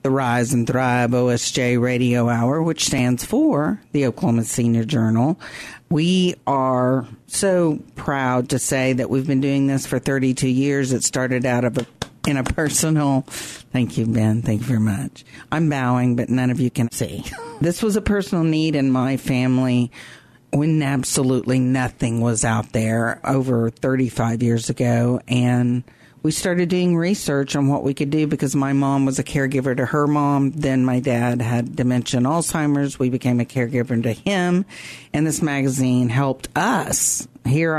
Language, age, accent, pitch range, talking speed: English, 50-69, American, 125-150 Hz, 170 wpm